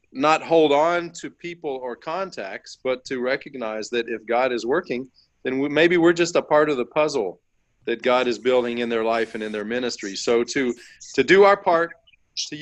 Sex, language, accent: male, English, American